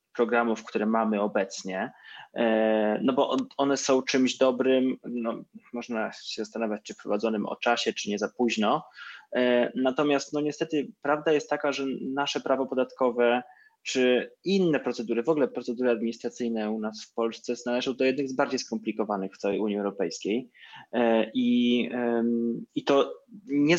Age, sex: 20-39, male